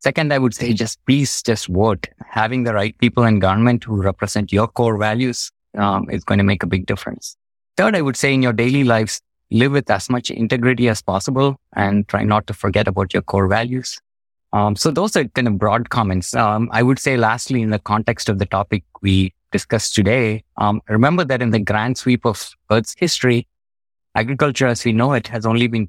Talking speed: 210 wpm